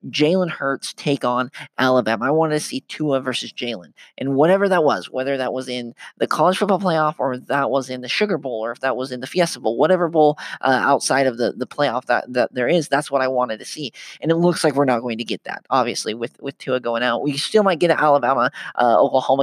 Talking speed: 245 wpm